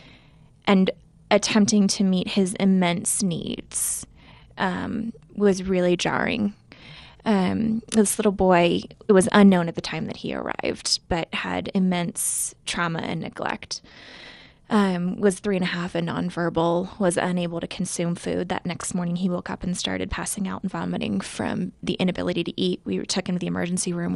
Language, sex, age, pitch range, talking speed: English, female, 20-39, 175-200 Hz, 165 wpm